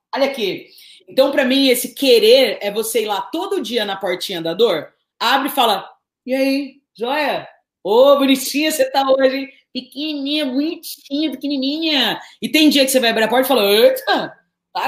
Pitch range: 220-300 Hz